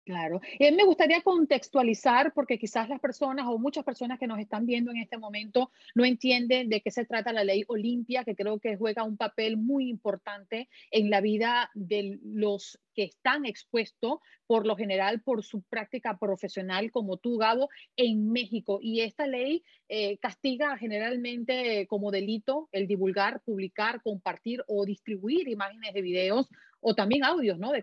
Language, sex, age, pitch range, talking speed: Spanish, female, 40-59, 205-255 Hz, 170 wpm